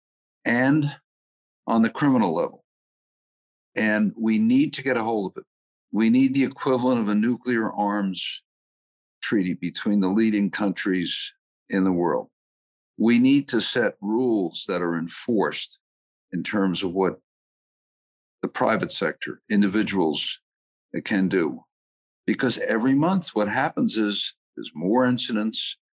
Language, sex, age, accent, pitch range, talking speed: English, male, 50-69, American, 95-115 Hz, 130 wpm